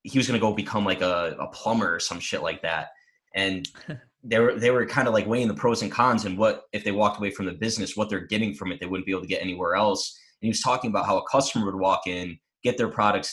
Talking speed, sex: 290 wpm, male